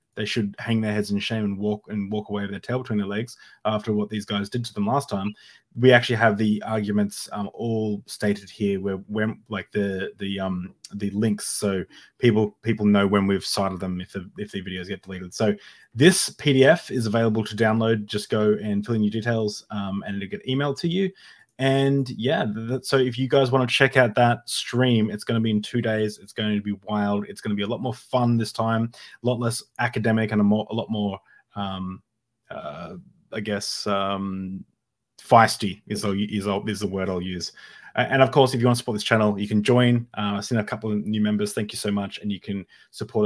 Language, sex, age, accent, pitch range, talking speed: English, male, 20-39, Australian, 100-120 Hz, 230 wpm